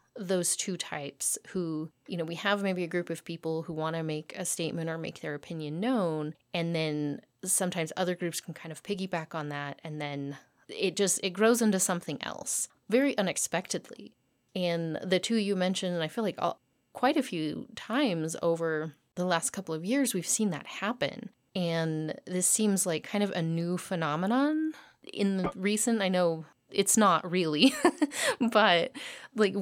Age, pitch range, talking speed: 30-49, 160-200 Hz, 180 wpm